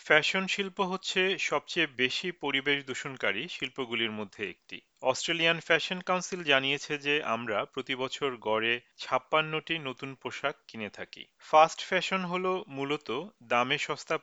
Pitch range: 125-160 Hz